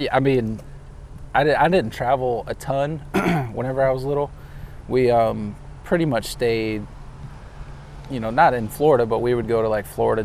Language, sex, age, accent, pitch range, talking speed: English, male, 20-39, American, 110-130 Hz, 175 wpm